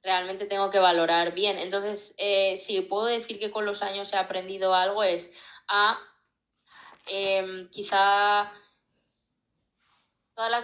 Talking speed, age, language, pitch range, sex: 130 wpm, 20-39, Spanish, 170-200 Hz, female